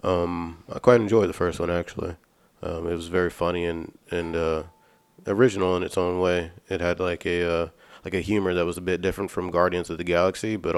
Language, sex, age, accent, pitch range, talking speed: English, male, 20-39, American, 85-95 Hz, 225 wpm